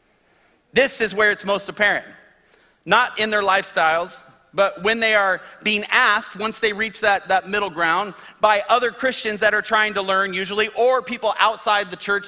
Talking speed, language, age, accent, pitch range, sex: 180 wpm, English, 40-59, American, 180-220 Hz, male